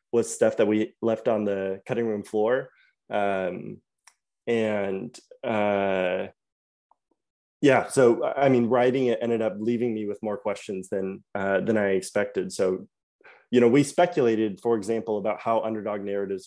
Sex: male